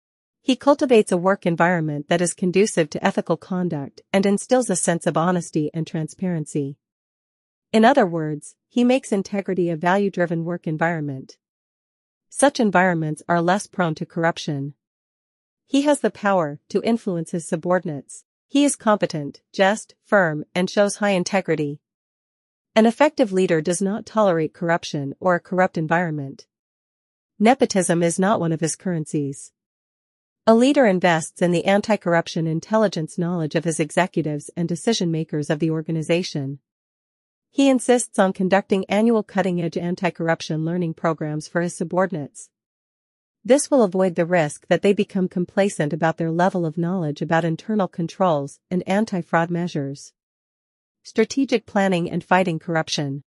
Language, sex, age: English, female, 40-59